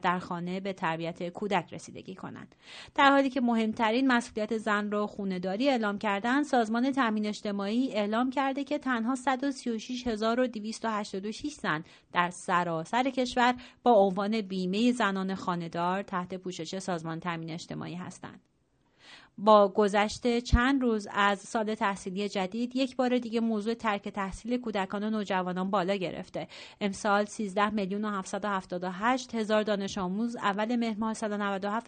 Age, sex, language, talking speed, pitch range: 30-49, female, Persian, 135 wpm, 190-235 Hz